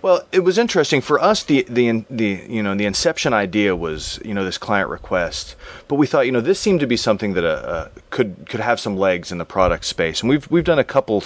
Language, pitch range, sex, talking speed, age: English, 100-130 Hz, male, 255 wpm, 30-49